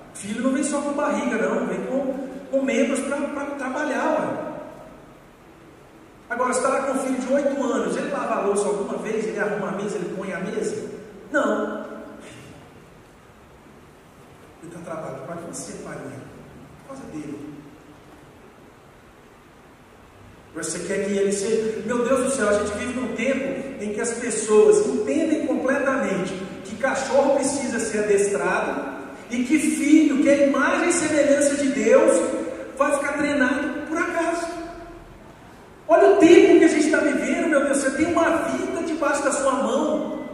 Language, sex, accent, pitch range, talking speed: Portuguese, male, Brazilian, 220-290 Hz, 165 wpm